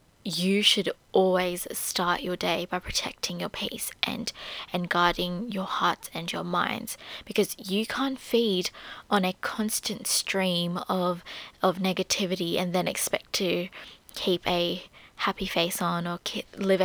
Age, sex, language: 20-39, female, English